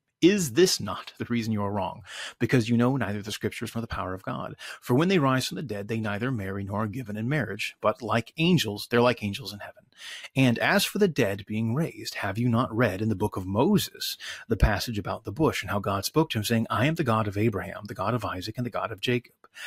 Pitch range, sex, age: 105-130 Hz, male, 30-49